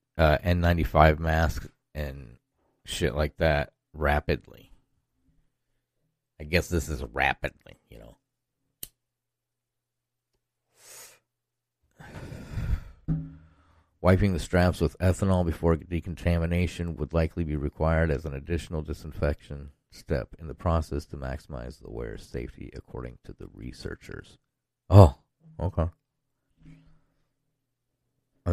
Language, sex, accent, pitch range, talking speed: English, male, American, 80-125 Hz, 95 wpm